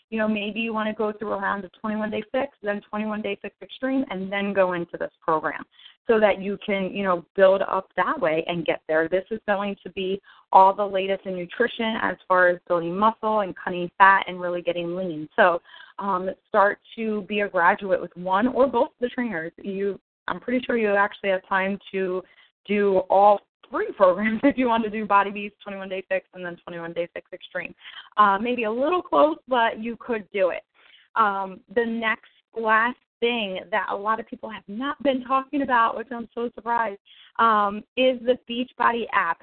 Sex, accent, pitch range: female, American, 190-235 Hz